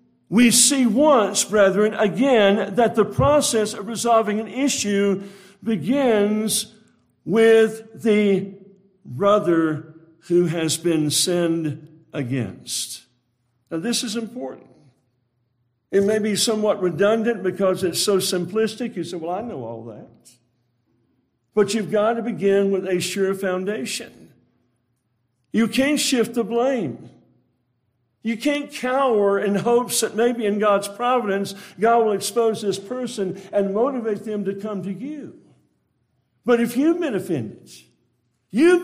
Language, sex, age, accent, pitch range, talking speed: English, male, 60-79, American, 170-230 Hz, 130 wpm